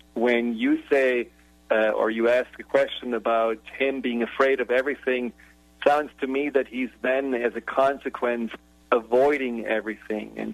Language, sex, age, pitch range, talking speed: English, male, 50-69, 115-135 Hz, 155 wpm